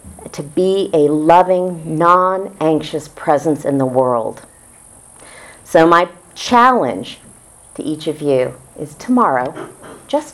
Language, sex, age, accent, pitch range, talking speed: English, female, 40-59, American, 145-195 Hz, 110 wpm